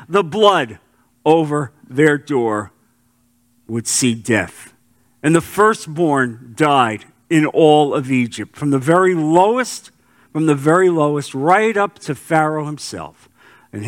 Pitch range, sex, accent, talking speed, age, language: 120-195 Hz, male, American, 130 wpm, 50-69, English